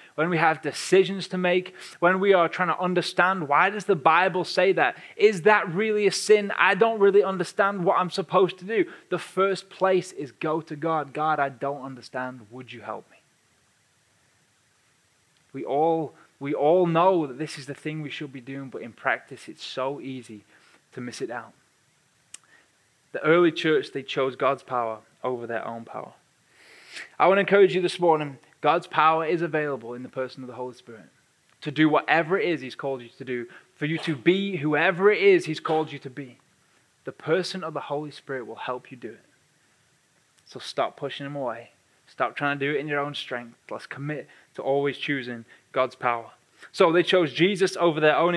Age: 20-39